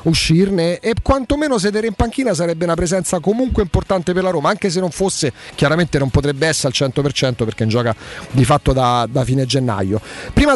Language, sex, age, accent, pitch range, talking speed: Italian, male, 40-59, native, 150-210 Hz, 195 wpm